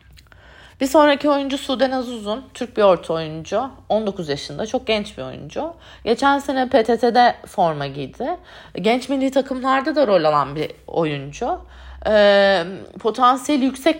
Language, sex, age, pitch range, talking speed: Turkish, female, 30-49, 185-255 Hz, 135 wpm